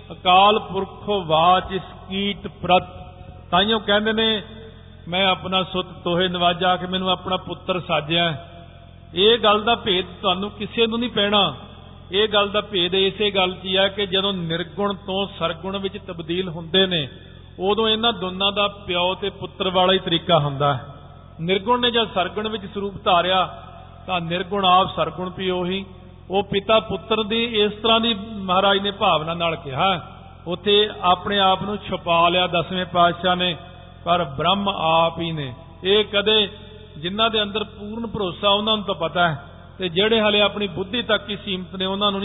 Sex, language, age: male, Punjabi, 50-69